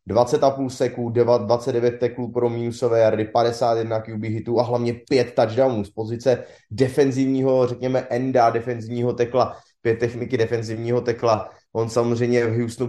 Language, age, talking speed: English, 20-39, 130 wpm